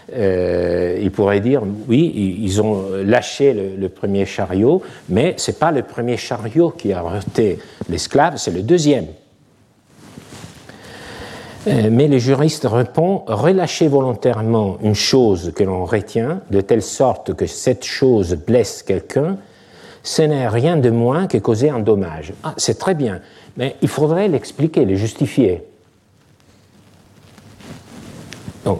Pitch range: 100-140 Hz